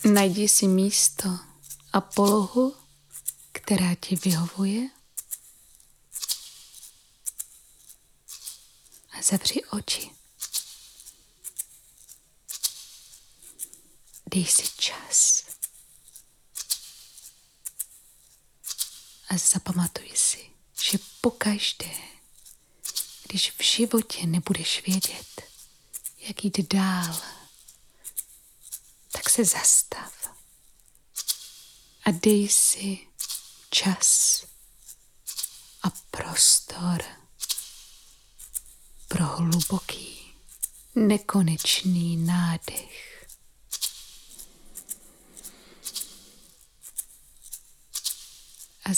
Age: 20-39